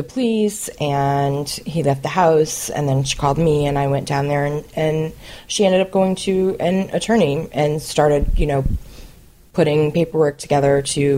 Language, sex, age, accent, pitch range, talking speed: English, female, 30-49, American, 145-170 Hz, 175 wpm